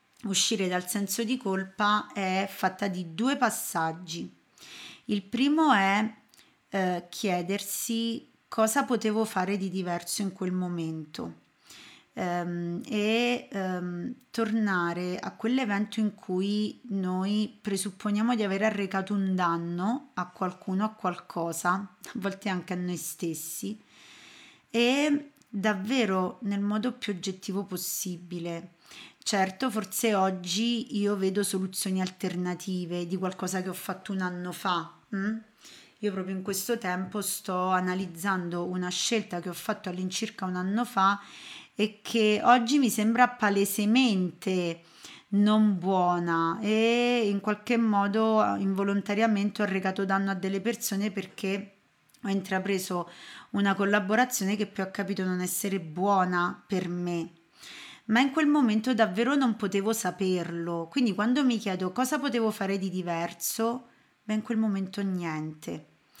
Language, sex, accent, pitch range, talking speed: Italian, female, native, 180-220 Hz, 125 wpm